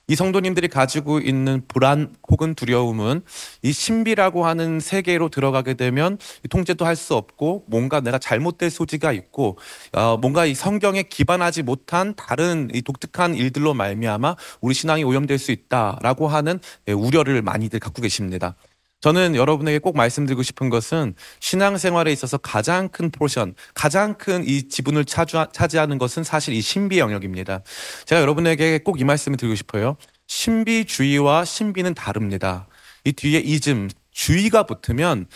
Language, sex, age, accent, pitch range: Korean, male, 30-49, native, 125-170 Hz